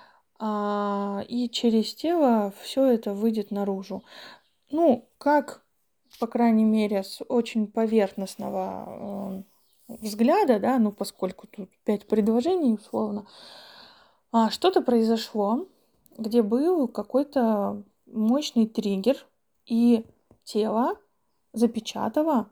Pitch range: 215-260 Hz